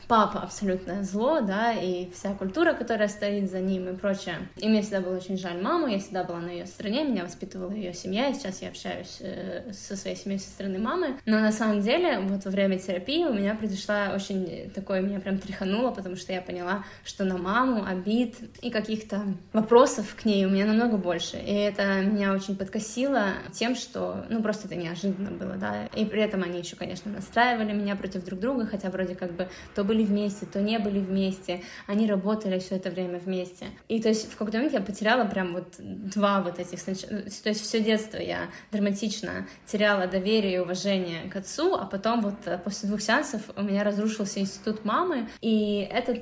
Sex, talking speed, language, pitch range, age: female, 200 wpm, Russian, 190-220 Hz, 20-39